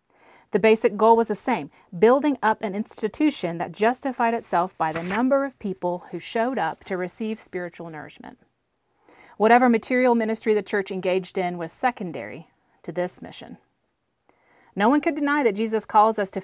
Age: 40-59